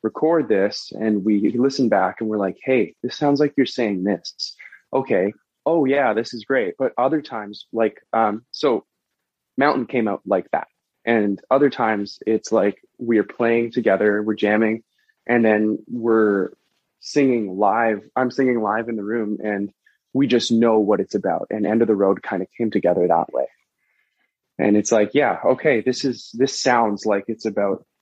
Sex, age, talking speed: male, 20-39, 180 wpm